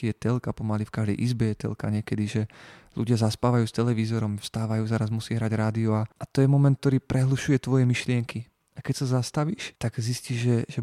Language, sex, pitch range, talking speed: Slovak, male, 115-135 Hz, 200 wpm